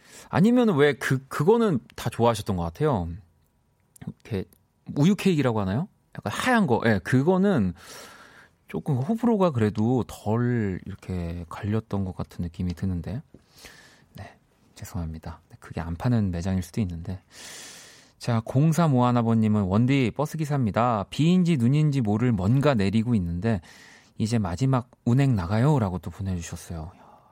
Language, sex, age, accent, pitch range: Korean, male, 40-59, native, 95-130 Hz